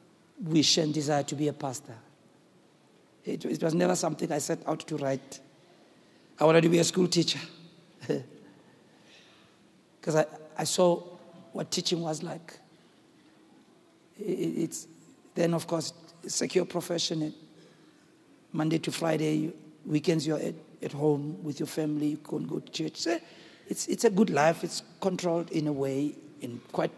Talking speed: 150 wpm